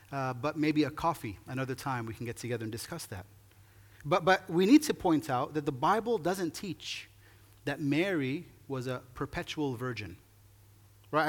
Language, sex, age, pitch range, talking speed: English, male, 30-49, 105-160 Hz, 175 wpm